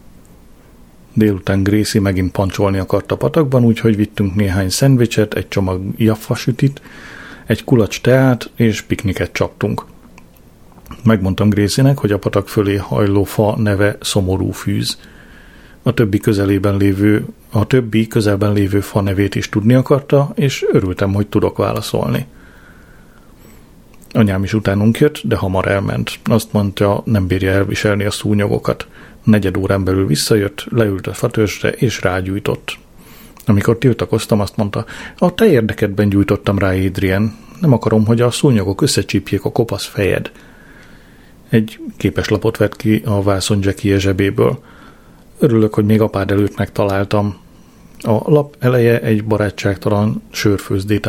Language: Hungarian